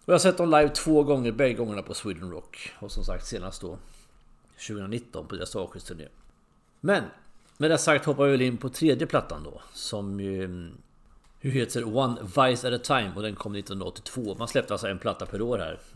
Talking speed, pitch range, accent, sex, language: 215 wpm, 90-125 Hz, Swedish, male, English